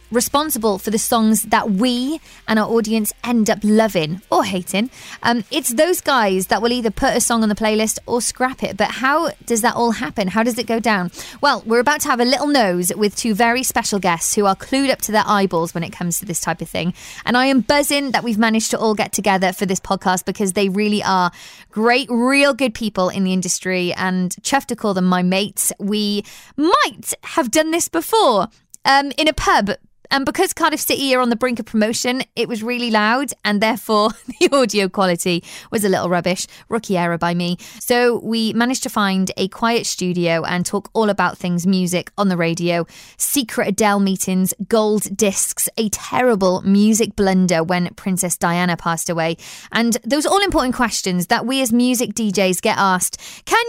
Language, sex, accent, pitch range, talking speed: English, female, British, 190-255 Hz, 205 wpm